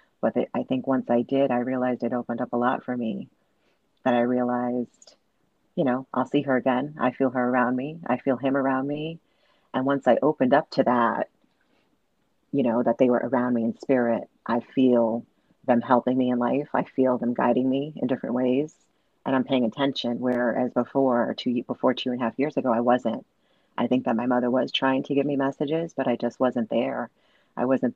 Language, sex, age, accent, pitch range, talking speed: English, female, 30-49, American, 125-135 Hz, 210 wpm